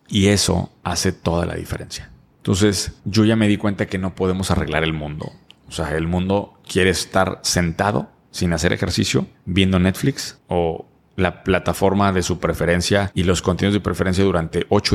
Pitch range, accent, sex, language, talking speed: 90-105 Hz, Mexican, male, Spanish, 175 wpm